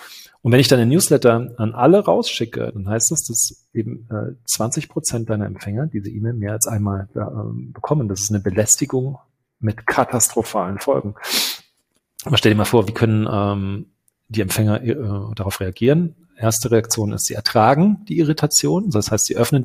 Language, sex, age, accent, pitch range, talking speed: German, male, 40-59, German, 105-130 Hz, 160 wpm